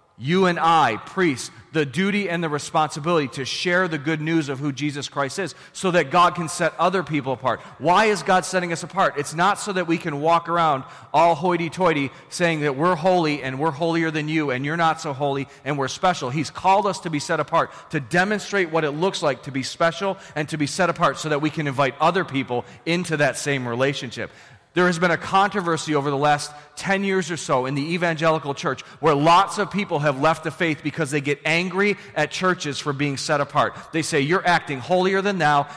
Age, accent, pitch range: 30-49, American, 145-180 Hz